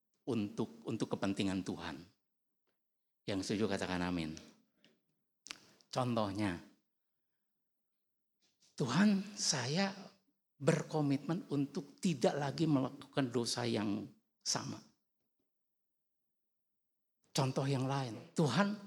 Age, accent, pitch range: 50-69, native, 135-200 Hz